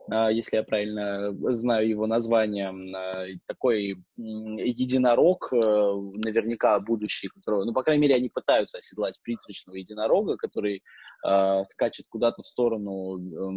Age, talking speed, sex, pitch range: 20-39, 110 wpm, male, 100-125 Hz